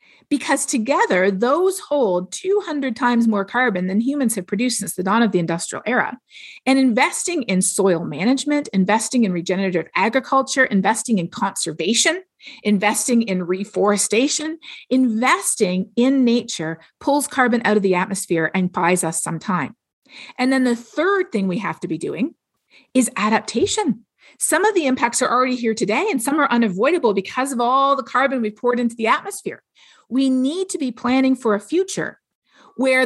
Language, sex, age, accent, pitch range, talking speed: English, female, 50-69, American, 205-270 Hz, 165 wpm